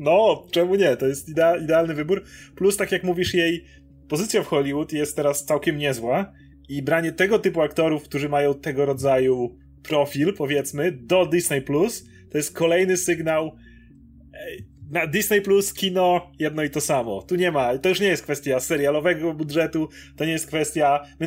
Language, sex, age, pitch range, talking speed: Polish, male, 30-49, 140-175 Hz, 165 wpm